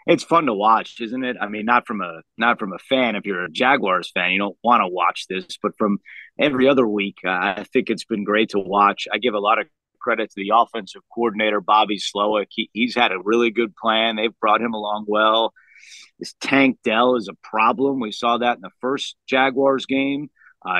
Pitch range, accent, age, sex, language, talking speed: 110-140 Hz, American, 30-49, male, English, 225 wpm